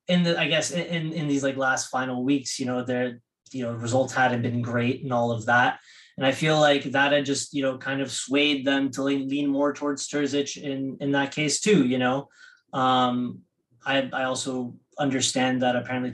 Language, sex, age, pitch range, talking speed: English, male, 20-39, 130-150 Hz, 215 wpm